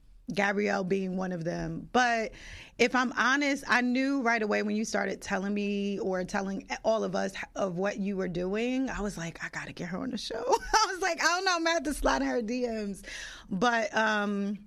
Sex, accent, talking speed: female, American, 215 wpm